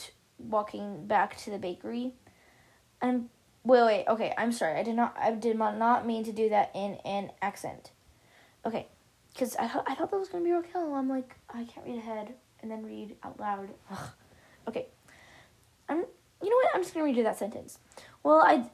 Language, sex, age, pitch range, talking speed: English, female, 10-29, 220-295 Hz, 200 wpm